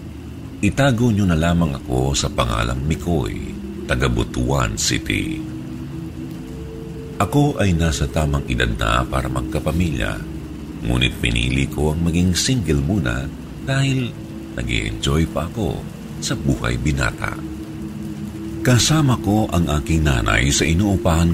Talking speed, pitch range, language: 110 wpm, 70-95 Hz, Filipino